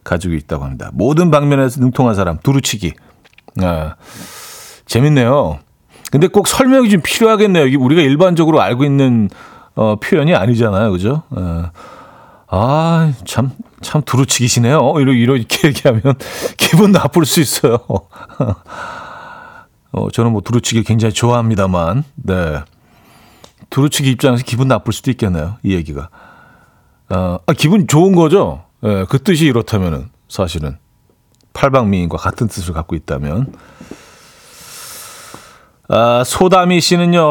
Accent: native